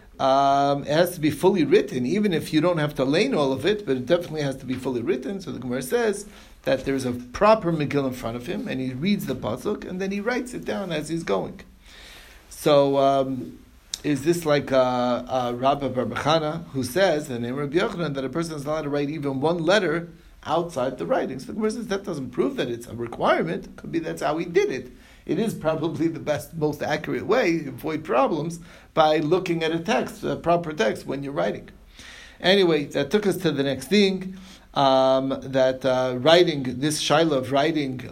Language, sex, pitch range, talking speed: English, male, 135-170 Hz, 205 wpm